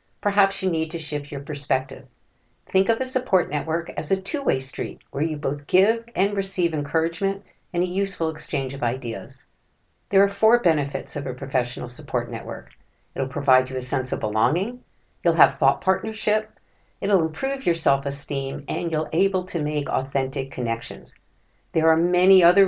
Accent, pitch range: American, 140-185 Hz